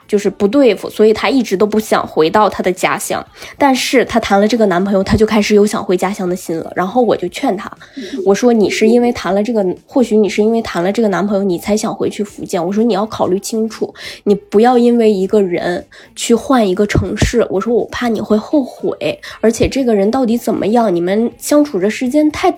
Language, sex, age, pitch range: Chinese, female, 10-29, 200-245 Hz